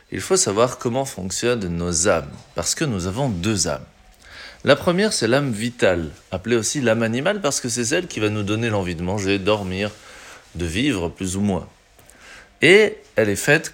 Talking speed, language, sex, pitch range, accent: 190 wpm, French, male, 95-120 Hz, French